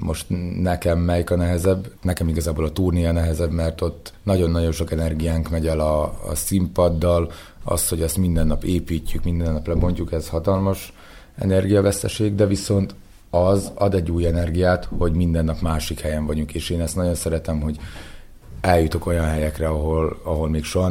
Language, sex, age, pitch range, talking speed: Hungarian, male, 30-49, 80-90 Hz, 165 wpm